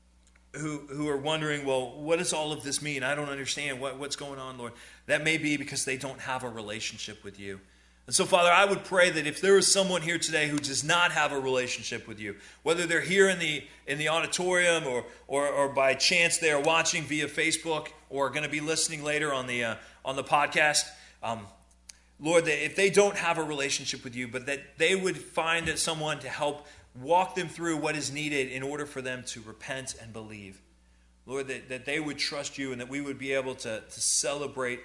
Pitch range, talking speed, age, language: 110-150 Hz, 225 wpm, 30-49, English